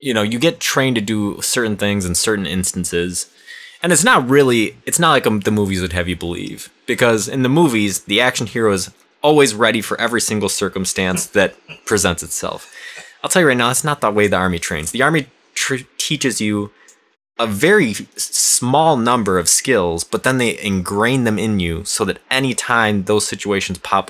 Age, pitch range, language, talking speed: 20-39, 95-120 Hz, English, 195 wpm